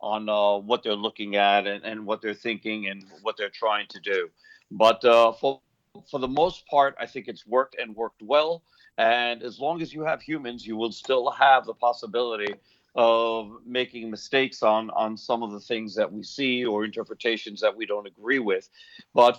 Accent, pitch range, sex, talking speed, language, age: American, 110-135 Hz, male, 200 wpm, English, 50-69